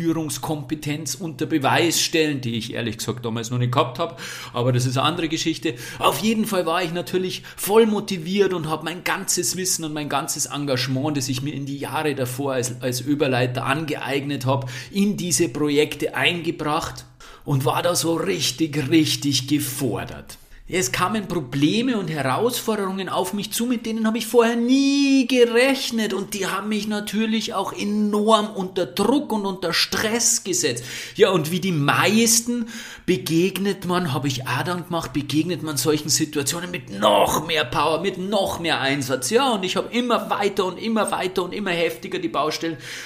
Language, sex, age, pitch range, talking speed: German, male, 40-59, 145-195 Hz, 175 wpm